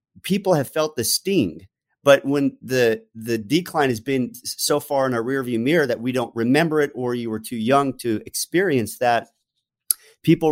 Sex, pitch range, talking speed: male, 110-135 Hz, 185 wpm